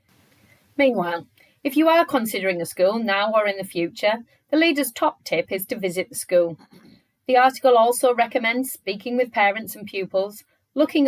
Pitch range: 175-250 Hz